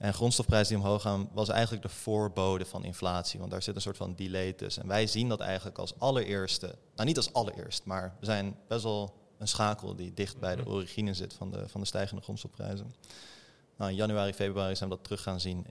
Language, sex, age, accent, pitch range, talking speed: Dutch, male, 20-39, Dutch, 90-105 Hz, 225 wpm